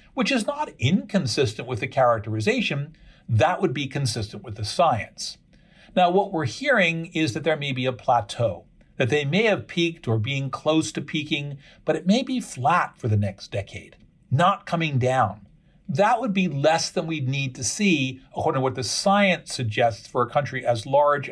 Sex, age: male, 50-69